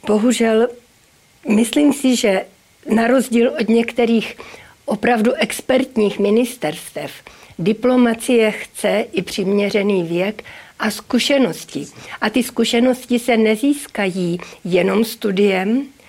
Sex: female